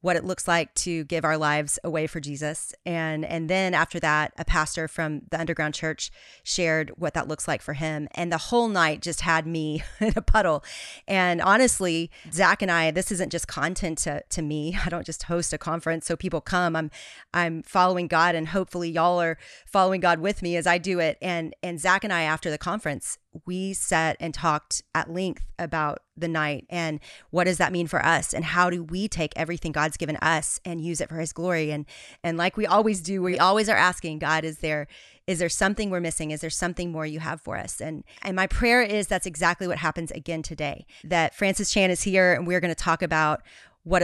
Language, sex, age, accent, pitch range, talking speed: English, female, 30-49, American, 160-190 Hz, 220 wpm